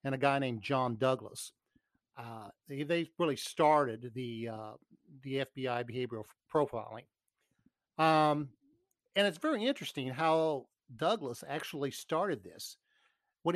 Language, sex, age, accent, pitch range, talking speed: English, male, 50-69, American, 120-180 Hz, 125 wpm